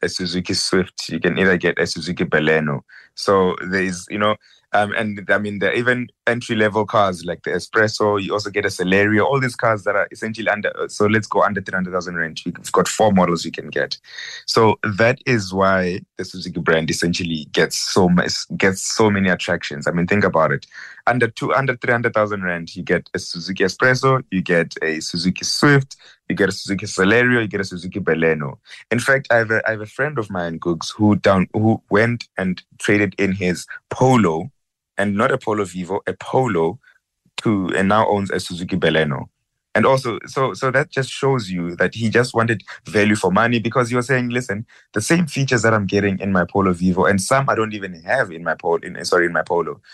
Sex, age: male, 20-39